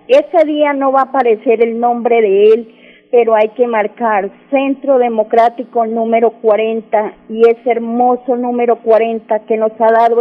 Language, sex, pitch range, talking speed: Spanish, female, 220-245 Hz, 160 wpm